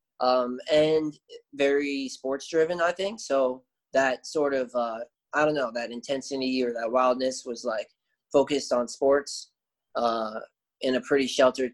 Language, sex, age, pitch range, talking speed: English, male, 20-39, 125-145 Hz, 150 wpm